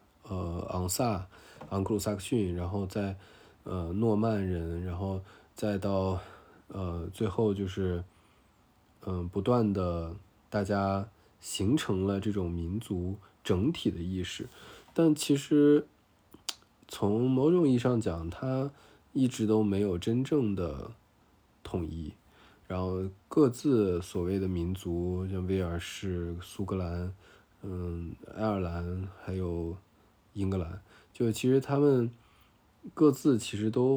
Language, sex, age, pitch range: Chinese, male, 20-39, 90-110 Hz